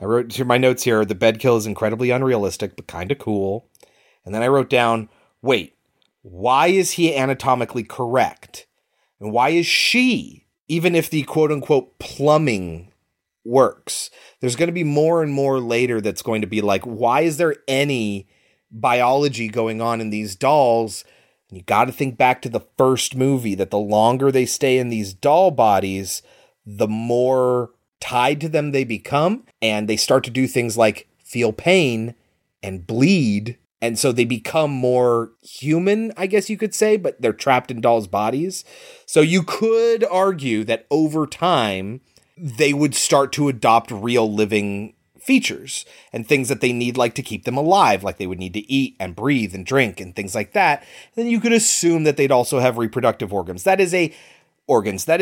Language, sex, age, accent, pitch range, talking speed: English, male, 30-49, American, 110-150 Hz, 185 wpm